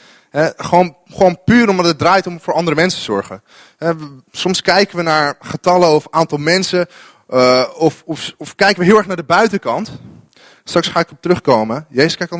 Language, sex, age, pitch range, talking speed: English, male, 20-39, 125-165 Hz, 180 wpm